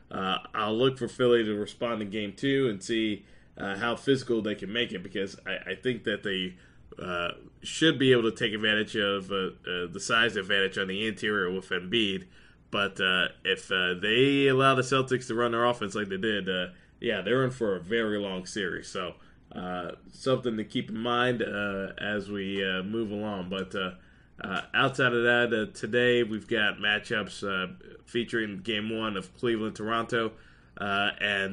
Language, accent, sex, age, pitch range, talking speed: English, American, male, 20-39, 100-125 Hz, 185 wpm